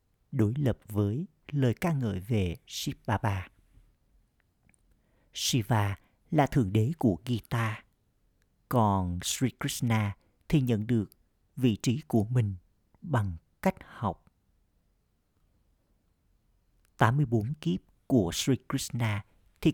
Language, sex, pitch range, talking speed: Vietnamese, male, 95-130 Hz, 100 wpm